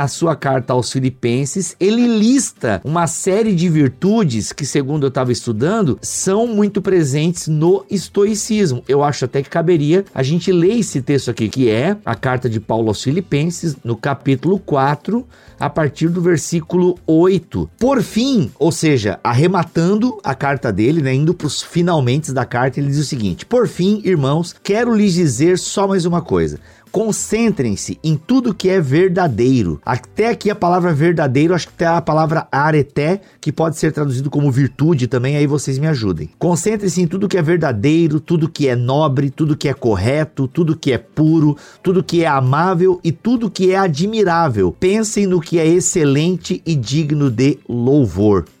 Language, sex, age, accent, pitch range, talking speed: Portuguese, male, 50-69, Brazilian, 135-185 Hz, 175 wpm